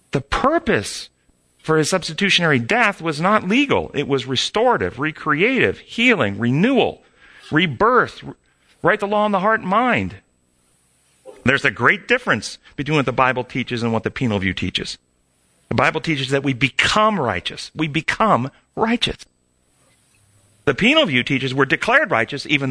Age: 40-59